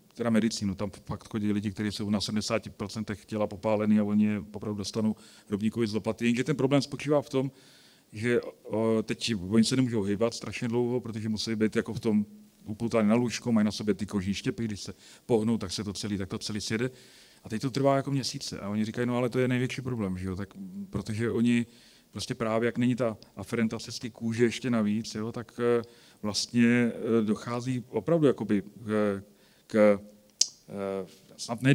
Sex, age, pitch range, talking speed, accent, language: male, 40-59, 110-135 Hz, 185 wpm, native, Czech